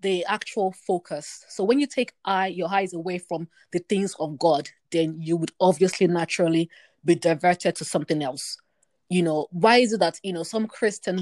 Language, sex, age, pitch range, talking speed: English, female, 20-39, 170-205 Hz, 185 wpm